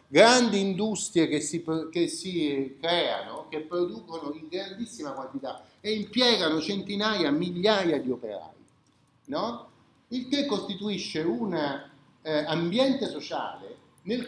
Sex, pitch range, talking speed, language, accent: male, 145-210 Hz, 115 wpm, Italian, native